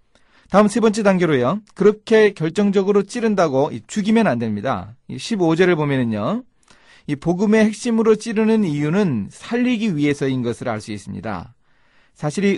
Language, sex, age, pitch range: Korean, male, 40-59, 125-200 Hz